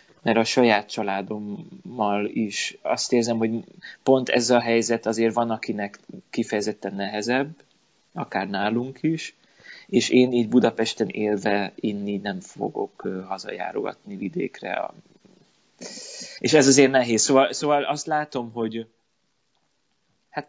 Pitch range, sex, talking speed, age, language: 105-130 Hz, male, 115 wpm, 20-39, Hungarian